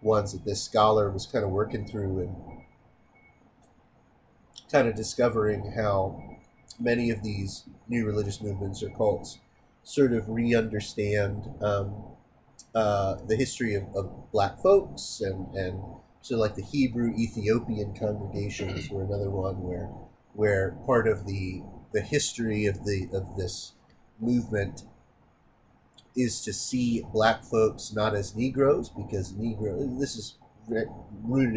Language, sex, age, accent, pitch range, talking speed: English, male, 30-49, American, 100-120 Hz, 135 wpm